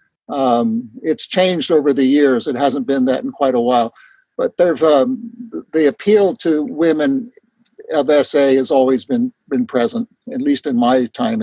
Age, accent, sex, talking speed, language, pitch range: 60-79, American, male, 170 wpm, English, 140-235 Hz